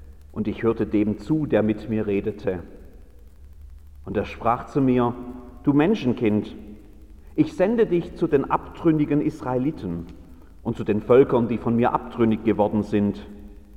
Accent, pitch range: German, 90-130 Hz